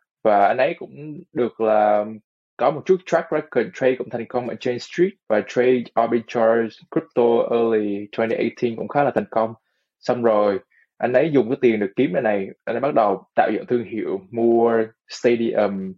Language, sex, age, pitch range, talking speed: Vietnamese, male, 20-39, 110-130 Hz, 185 wpm